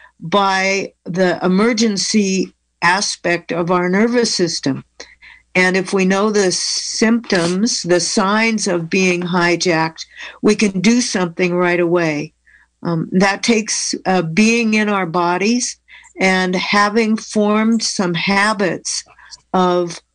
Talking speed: 115 wpm